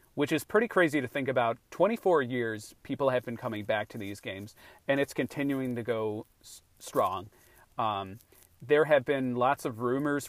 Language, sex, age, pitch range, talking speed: English, male, 40-59, 110-135 Hz, 175 wpm